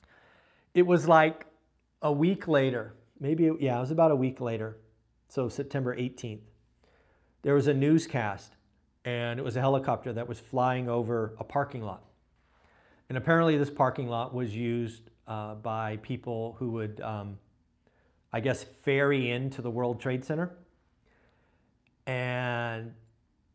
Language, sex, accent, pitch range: English, male, American, 95-125 Hz